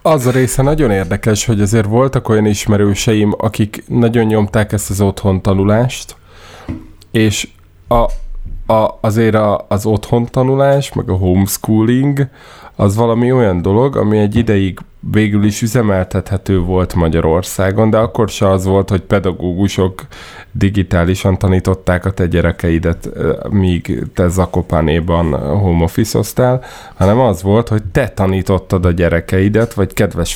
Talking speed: 125 wpm